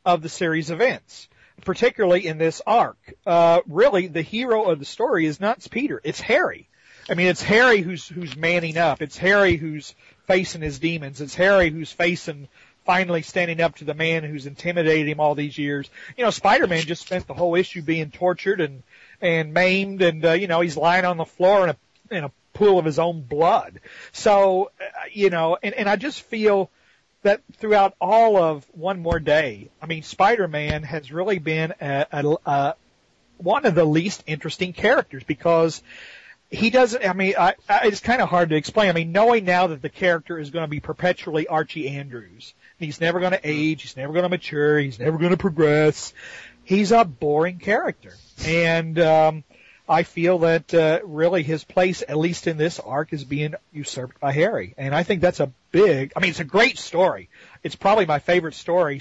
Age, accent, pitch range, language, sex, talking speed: 40-59, American, 150-185 Hz, English, male, 200 wpm